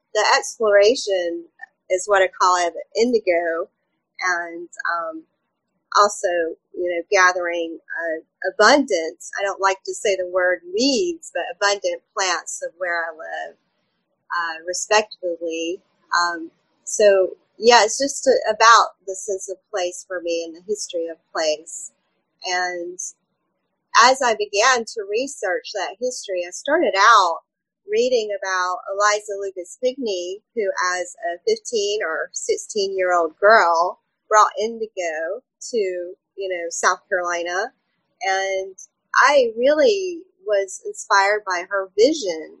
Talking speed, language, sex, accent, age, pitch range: 125 wpm, English, female, American, 30-49, 180-230 Hz